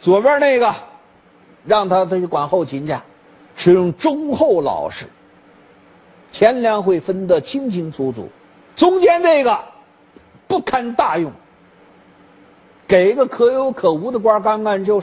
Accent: native